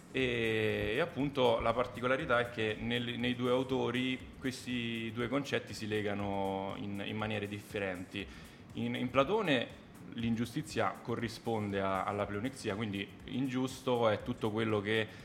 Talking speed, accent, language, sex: 135 wpm, native, Italian, male